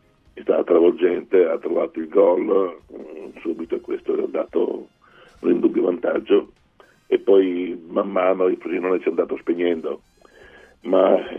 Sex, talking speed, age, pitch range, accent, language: male, 135 wpm, 50-69, 345-425 Hz, native, Italian